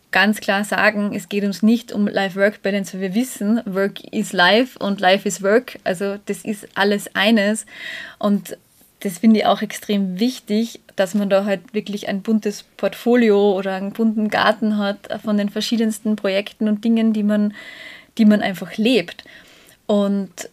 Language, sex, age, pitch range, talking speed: German, female, 20-39, 200-225 Hz, 165 wpm